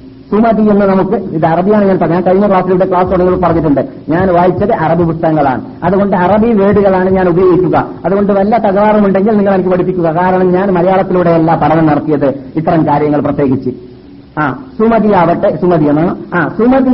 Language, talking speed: Malayalam, 140 wpm